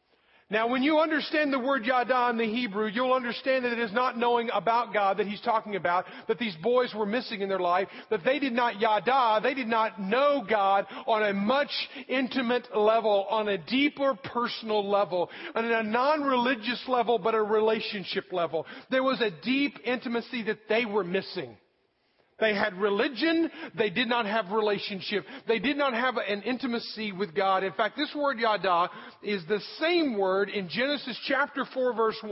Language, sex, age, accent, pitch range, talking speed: English, male, 40-59, American, 210-255 Hz, 180 wpm